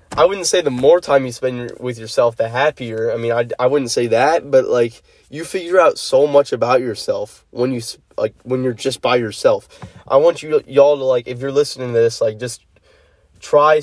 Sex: male